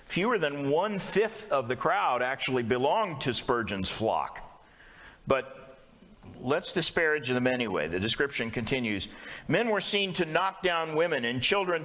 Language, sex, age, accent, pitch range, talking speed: English, male, 50-69, American, 125-165 Hz, 140 wpm